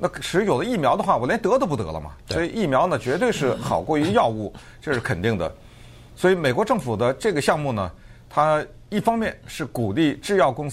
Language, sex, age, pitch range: Chinese, male, 50-69, 105-150 Hz